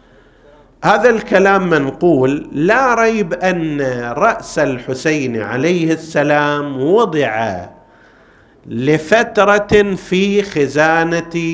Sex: male